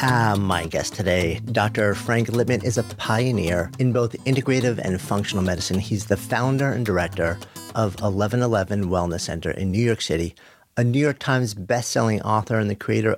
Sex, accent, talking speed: male, American, 175 wpm